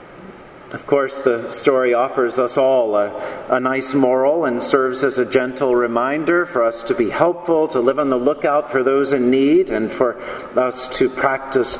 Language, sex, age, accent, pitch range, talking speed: English, male, 50-69, American, 125-145 Hz, 185 wpm